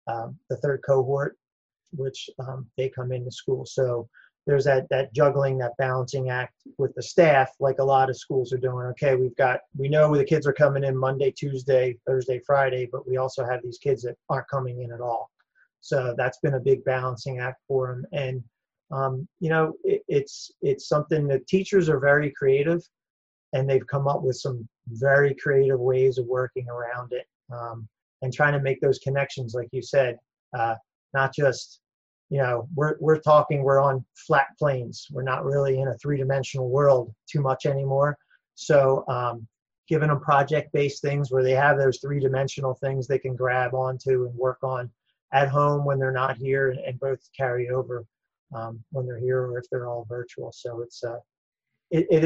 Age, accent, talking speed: 30-49, American, 190 wpm